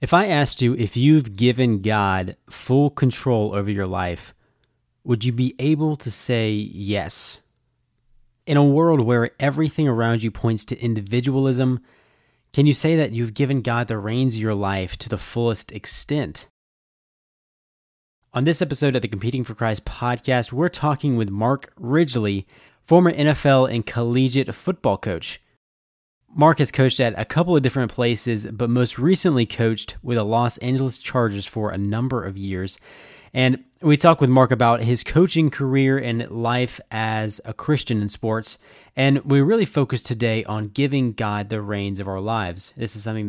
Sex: male